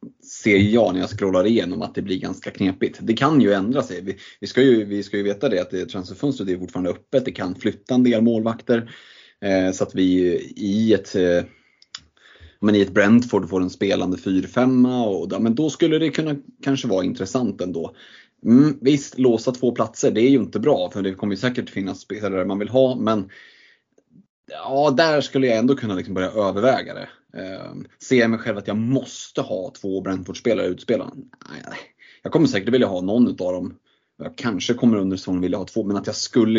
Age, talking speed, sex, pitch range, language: 30-49, 210 wpm, male, 95-130 Hz, Swedish